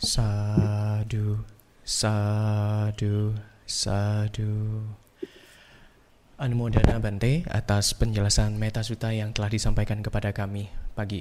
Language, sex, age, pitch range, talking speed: Indonesian, male, 20-39, 100-115 Hz, 75 wpm